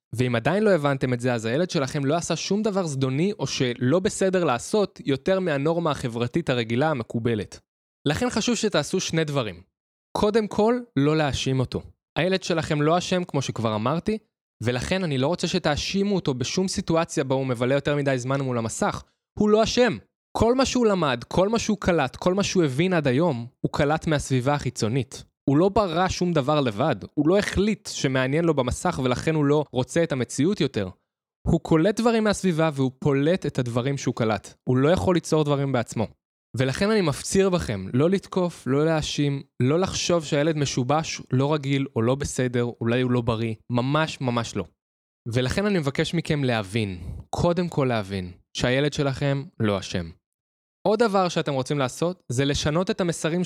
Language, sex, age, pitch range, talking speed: Hebrew, male, 20-39, 125-175 Hz, 175 wpm